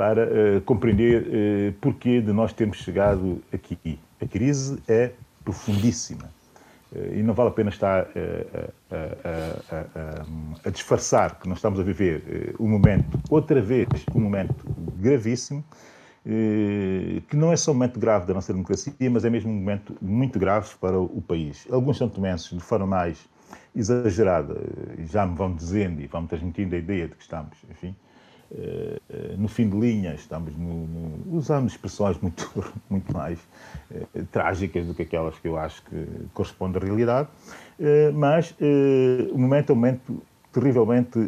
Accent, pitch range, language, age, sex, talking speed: Brazilian, 95-130 Hz, Portuguese, 40-59, male, 170 wpm